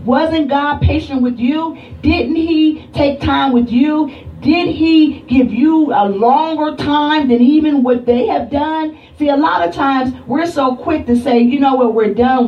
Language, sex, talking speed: English, female, 190 wpm